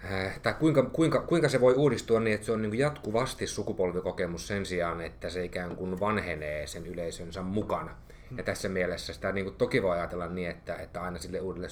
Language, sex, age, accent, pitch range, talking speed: Finnish, male, 30-49, native, 90-105 Hz, 200 wpm